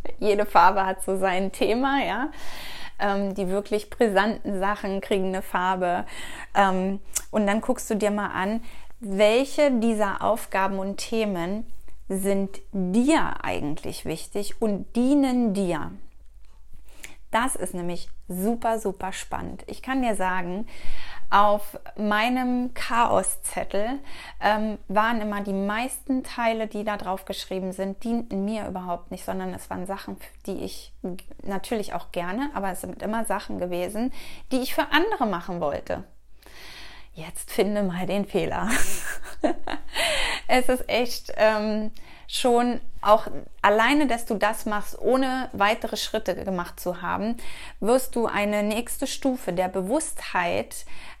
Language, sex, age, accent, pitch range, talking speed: German, female, 20-39, German, 195-235 Hz, 130 wpm